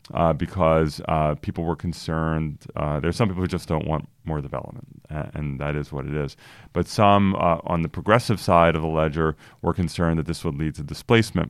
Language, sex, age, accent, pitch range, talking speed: English, male, 30-49, American, 75-85 Hz, 215 wpm